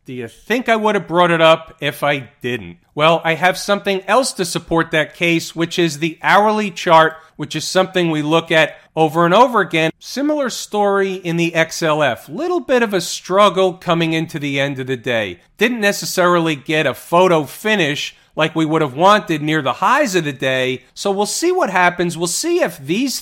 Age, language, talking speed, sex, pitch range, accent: 40-59, English, 205 wpm, male, 145-180 Hz, American